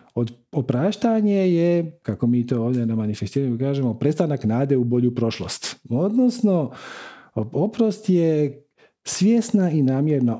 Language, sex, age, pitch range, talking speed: Croatian, male, 50-69, 110-165 Hz, 120 wpm